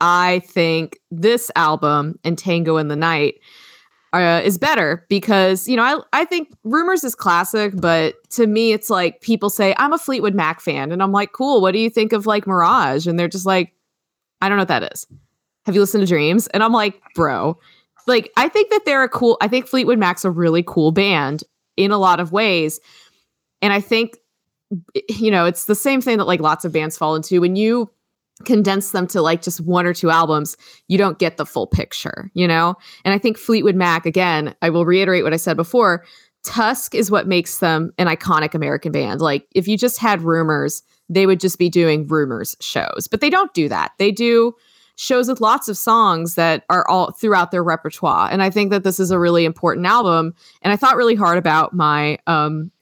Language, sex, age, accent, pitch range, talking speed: English, female, 20-39, American, 165-220 Hz, 215 wpm